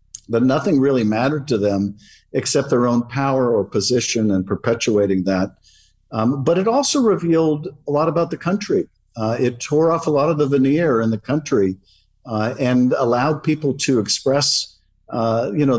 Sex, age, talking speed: male, 50-69, 175 wpm